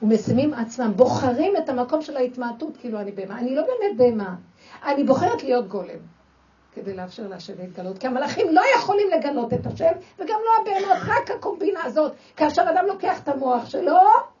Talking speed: 170 wpm